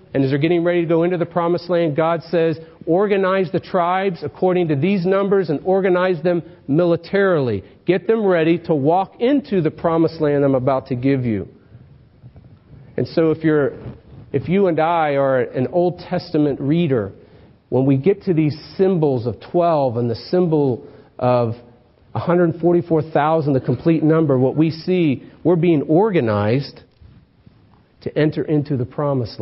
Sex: male